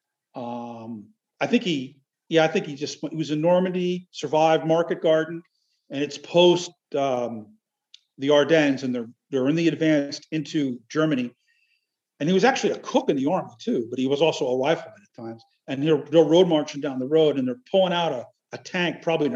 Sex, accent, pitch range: male, American, 145-185 Hz